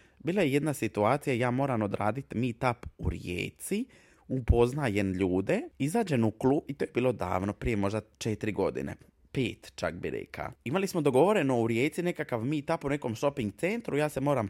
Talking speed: 175 wpm